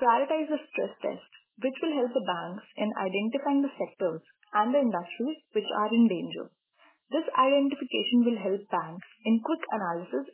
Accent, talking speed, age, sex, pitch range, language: Indian, 165 wpm, 20-39, female, 205-280 Hz, English